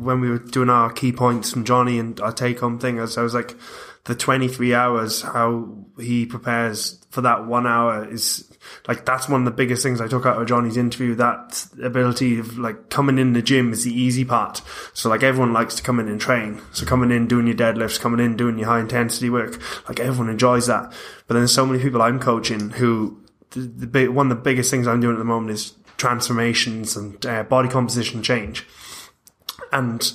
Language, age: English, 20-39